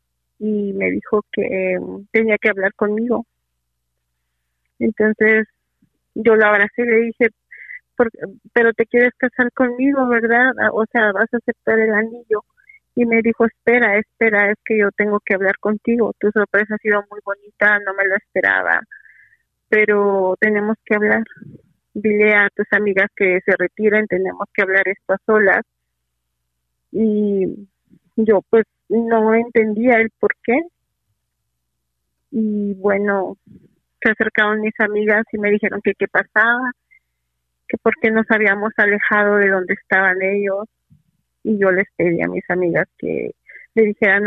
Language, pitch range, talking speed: Spanish, 190-225 Hz, 145 wpm